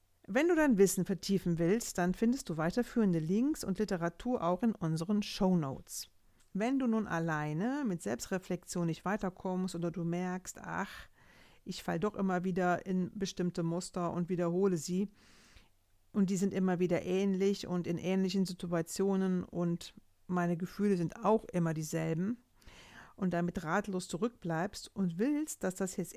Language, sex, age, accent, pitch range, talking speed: German, female, 50-69, German, 170-215 Hz, 150 wpm